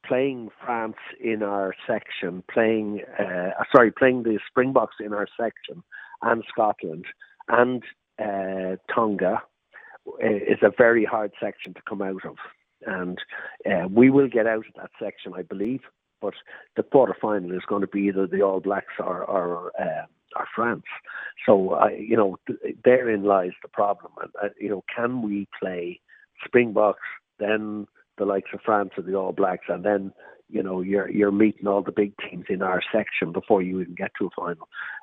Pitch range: 95-110 Hz